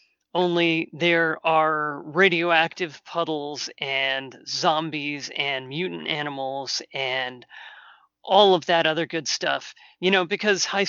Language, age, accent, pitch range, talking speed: English, 30-49, American, 150-200 Hz, 115 wpm